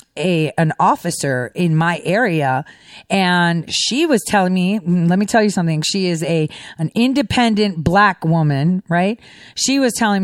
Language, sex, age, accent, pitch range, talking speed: English, female, 30-49, American, 190-285 Hz, 160 wpm